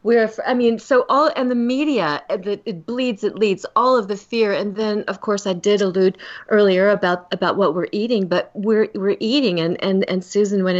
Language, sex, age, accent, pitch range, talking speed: English, female, 40-59, American, 180-225 Hz, 215 wpm